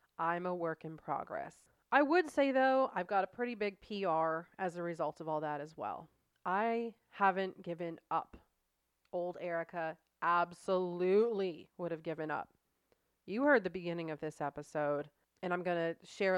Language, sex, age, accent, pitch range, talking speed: English, female, 30-49, American, 165-205 Hz, 170 wpm